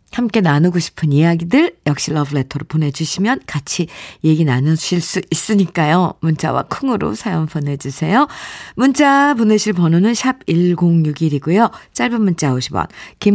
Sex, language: female, Korean